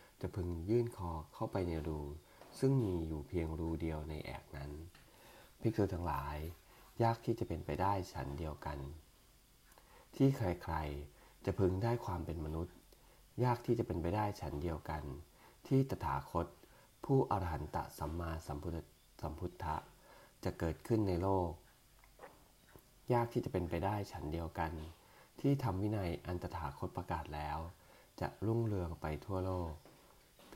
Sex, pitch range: male, 80-95 Hz